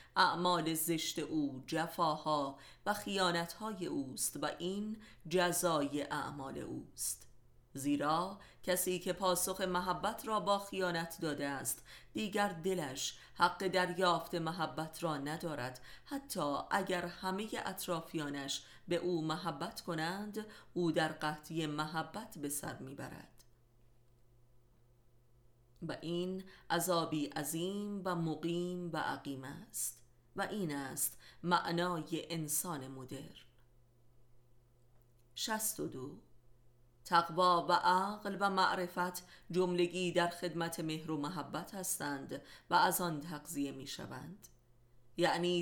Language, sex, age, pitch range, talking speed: Persian, female, 30-49, 145-185 Hz, 100 wpm